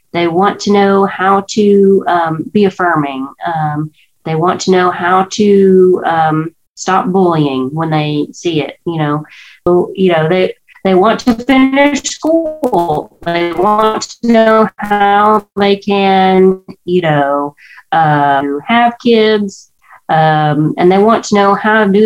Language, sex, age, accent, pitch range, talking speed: English, female, 30-49, American, 160-210 Hz, 150 wpm